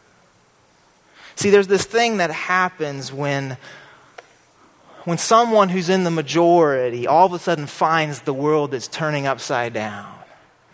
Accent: American